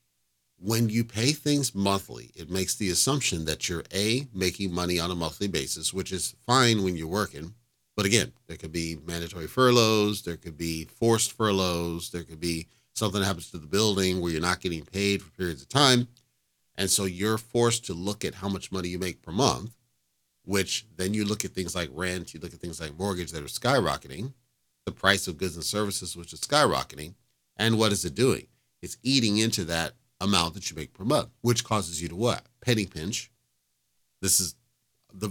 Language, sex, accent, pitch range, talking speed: English, male, American, 80-105 Hz, 200 wpm